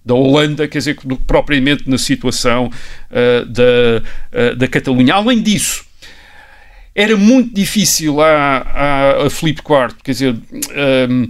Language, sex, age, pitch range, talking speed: Portuguese, male, 50-69, 135-195 Hz, 115 wpm